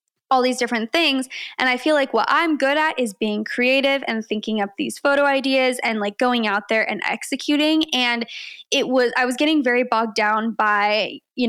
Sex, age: female, 20-39